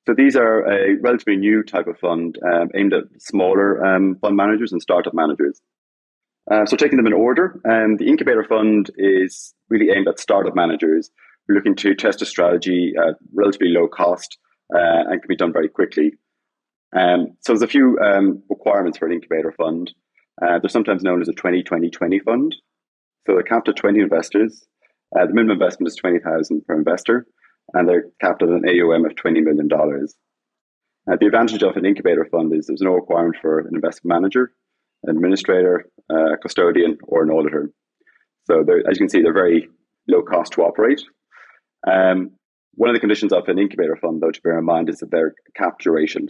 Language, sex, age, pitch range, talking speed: English, male, 30-49, 85-120 Hz, 195 wpm